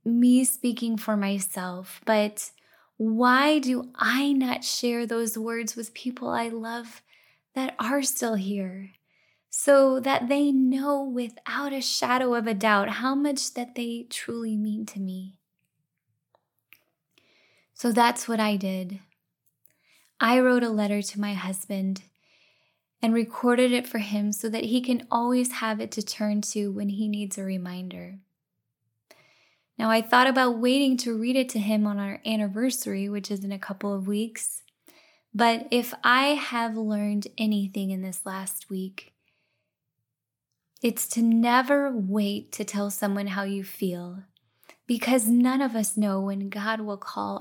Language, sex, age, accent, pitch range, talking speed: English, female, 10-29, American, 195-245 Hz, 150 wpm